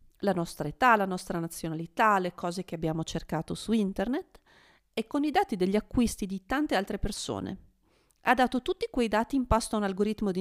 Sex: female